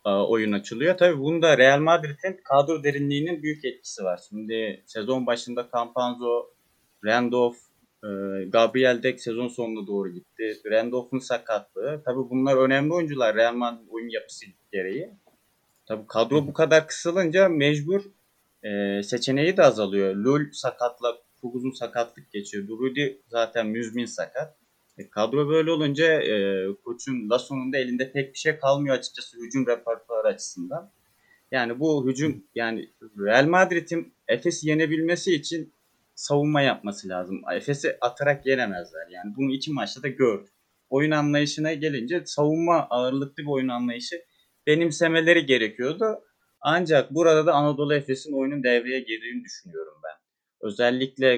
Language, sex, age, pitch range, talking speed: Turkish, male, 30-49, 120-150 Hz, 125 wpm